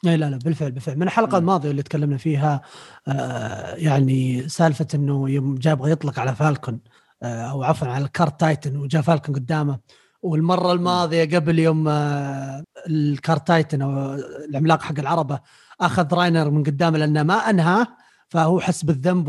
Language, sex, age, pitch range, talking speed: Arabic, male, 30-49, 150-200 Hz, 145 wpm